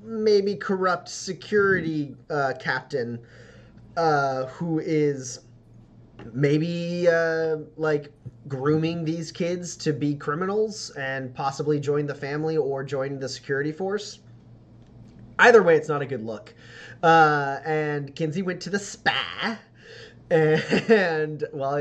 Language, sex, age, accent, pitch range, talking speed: English, male, 20-39, American, 125-165 Hz, 120 wpm